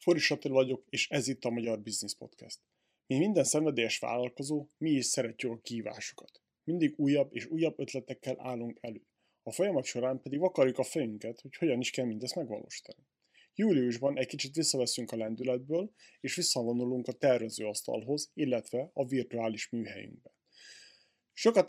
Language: Hungarian